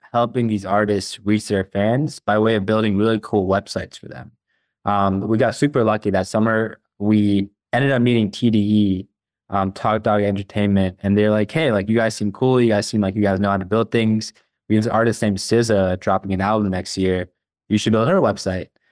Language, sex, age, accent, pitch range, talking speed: English, male, 20-39, American, 100-115 Hz, 215 wpm